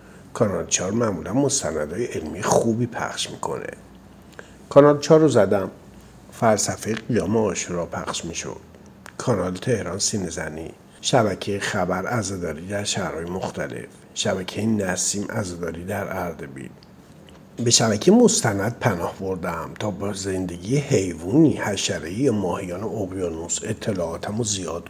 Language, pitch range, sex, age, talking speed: Persian, 95-140 Hz, male, 50-69, 110 wpm